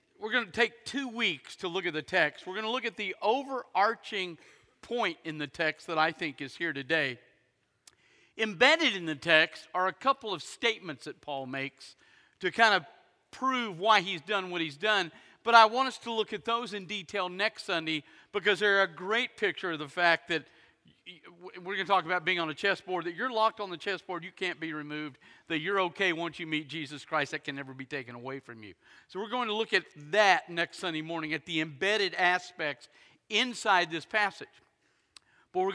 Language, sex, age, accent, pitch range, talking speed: Russian, male, 40-59, American, 155-210 Hz, 210 wpm